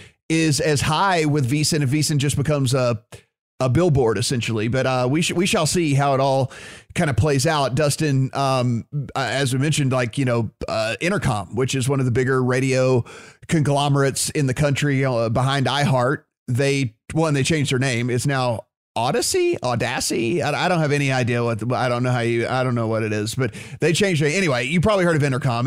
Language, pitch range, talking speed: English, 130-155 Hz, 215 wpm